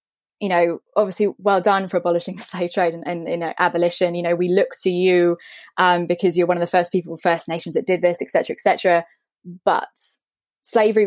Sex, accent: female, British